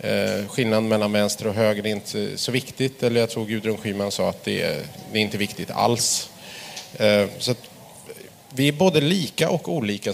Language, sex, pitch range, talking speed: Swedish, male, 105-145 Hz, 180 wpm